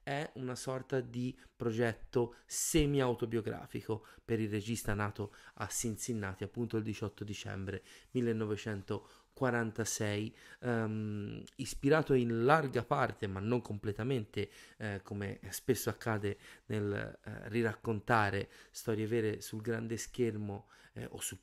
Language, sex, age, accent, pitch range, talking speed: Italian, male, 30-49, native, 105-135 Hz, 110 wpm